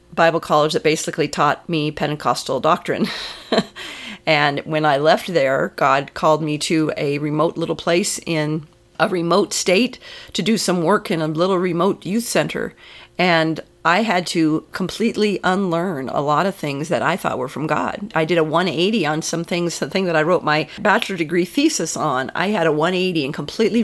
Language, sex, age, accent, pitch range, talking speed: English, female, 40-59, American, 160-200 Hz, 185 wpm